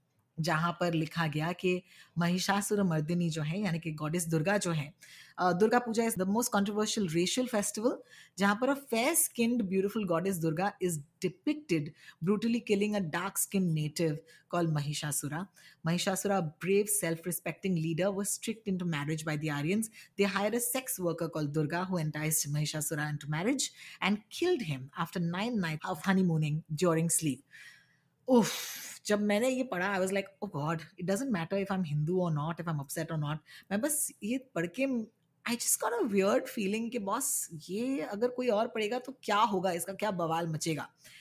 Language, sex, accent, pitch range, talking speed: Hindi, female, native, 165-220 Hz, 125 wpm